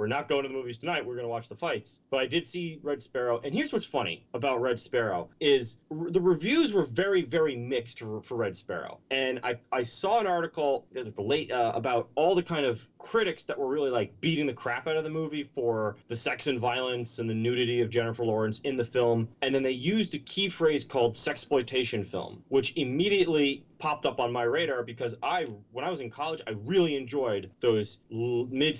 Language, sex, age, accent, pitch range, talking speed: English, male, 30-49, American, 115-150 Hz, 225 wpm